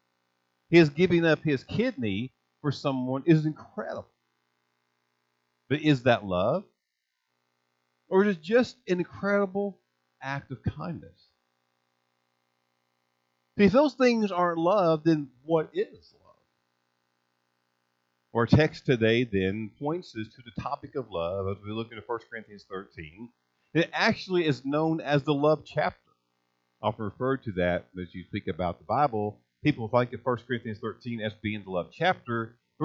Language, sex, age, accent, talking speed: English, male, 50-69, American, 145 wpm